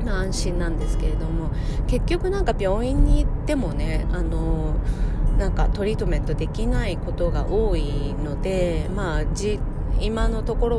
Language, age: Japanese, 30-49